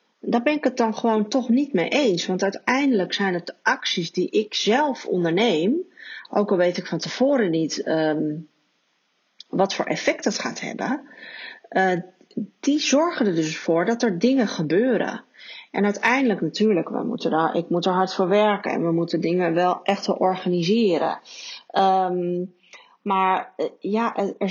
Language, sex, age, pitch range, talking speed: Dutch, female, 30-49, 180-245 Hz, 165 wpm